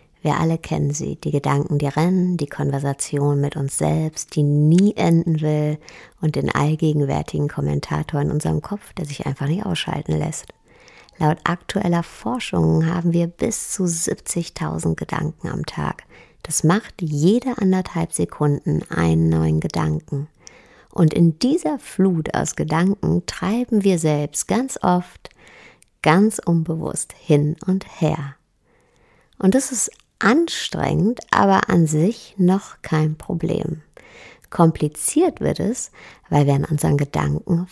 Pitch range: 150-190 Hz